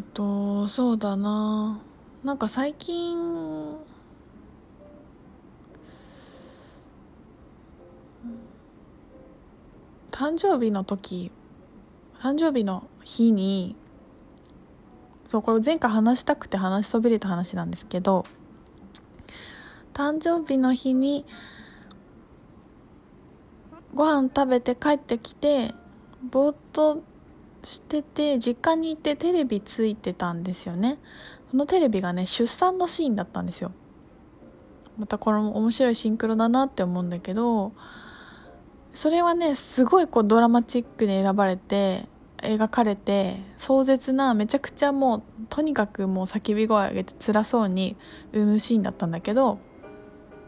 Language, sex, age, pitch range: Japanese, female, 20-39, 205-280 Hz